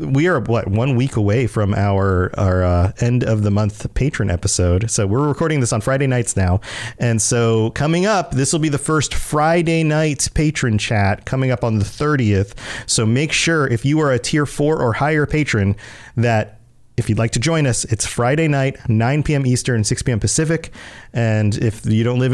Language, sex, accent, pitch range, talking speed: English, male, American, 115-155 Hz, 200 wpm